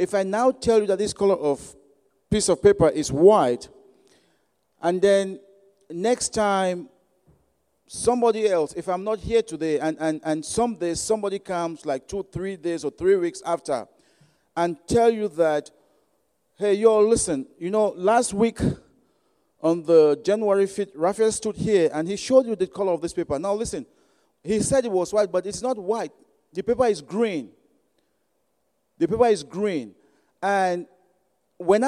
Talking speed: 170 wpm